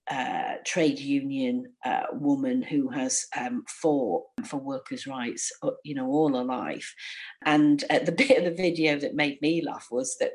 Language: English